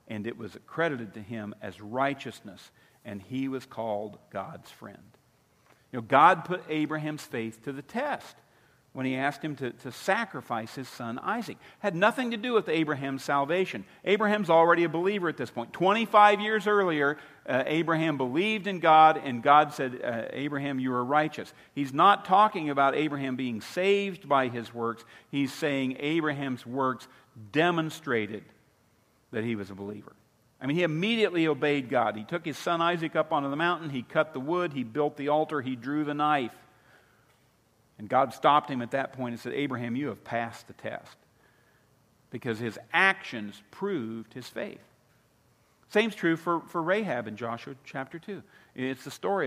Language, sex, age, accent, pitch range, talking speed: English, male, 50-69, American, 120-165 Hz, 175 wpm